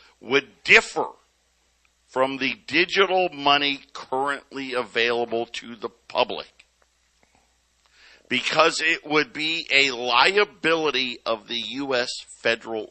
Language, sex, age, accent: English, male, 50-69, American